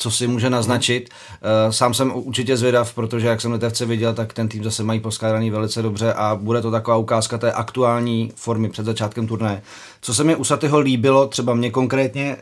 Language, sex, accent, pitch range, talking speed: Czech, male, native, 110-125 Hz, 200 wpm